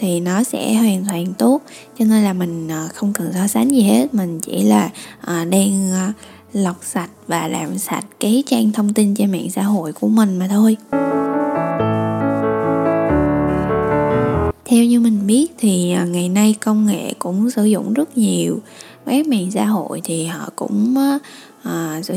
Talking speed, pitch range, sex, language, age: 160 wpm, 180-240 Hz, female, Vietnamese, 10-29